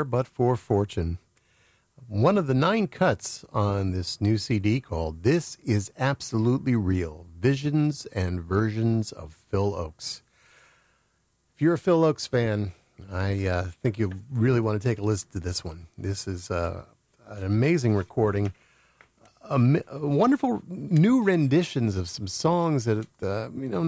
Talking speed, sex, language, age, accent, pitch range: 150 wpm, male, English, 50-69, American, 95-140 Hz